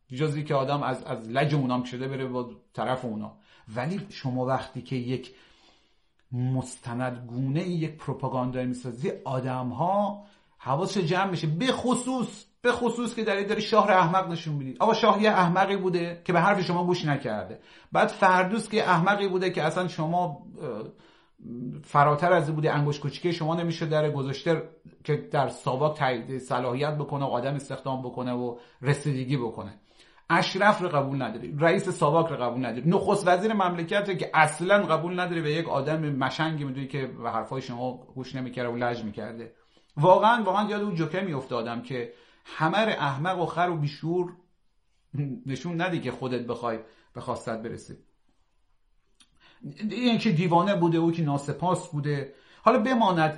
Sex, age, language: male, 40-59, Persian